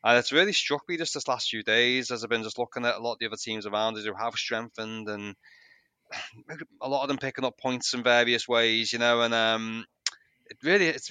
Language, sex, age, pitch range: English, male, 20-39, 110-130 Hz